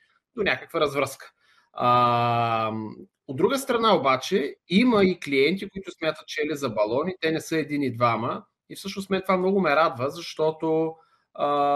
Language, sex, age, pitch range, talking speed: Bulgarian, male, 30-49, 130-185 Hz, 160 wpm